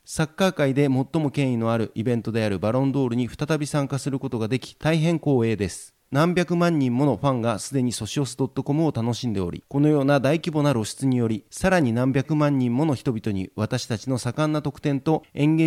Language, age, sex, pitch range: Japanese, 30-49, male, 120-150 Hz